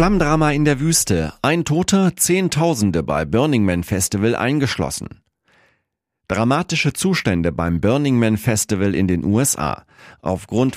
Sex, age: male, 40-59